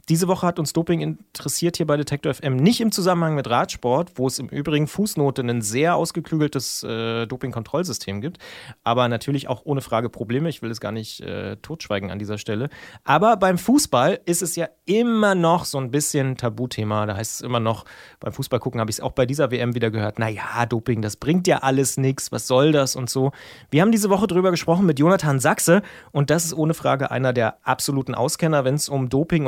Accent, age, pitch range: German, 30-49, 125-165 Hz